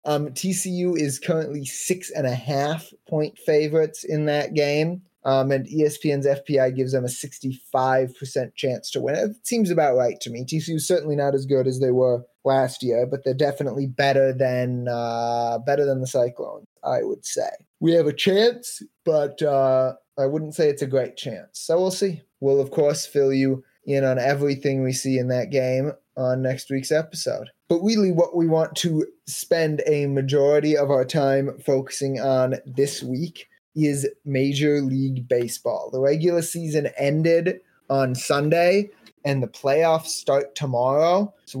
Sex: male